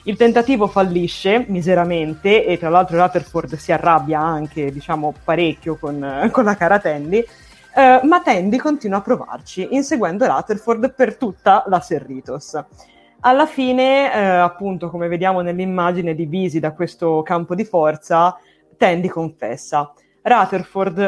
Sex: female